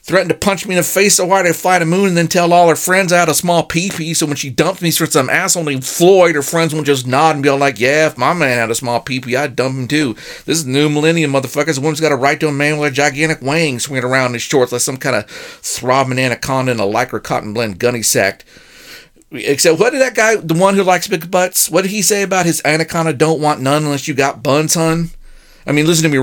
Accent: American